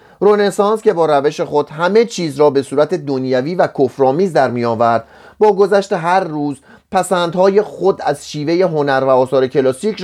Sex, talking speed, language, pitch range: male, 160 wpm, Persian, 135-195 Hz